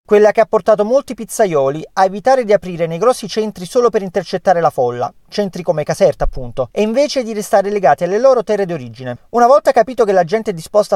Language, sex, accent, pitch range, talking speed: Italian, male, native, 170-225 Hz, 215 wpm